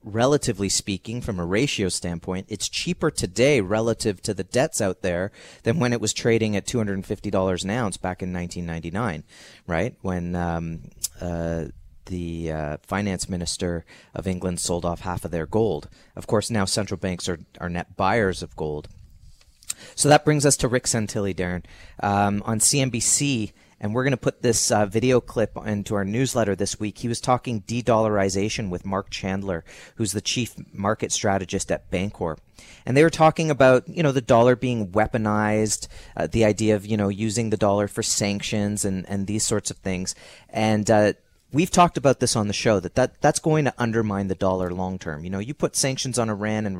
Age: 30-49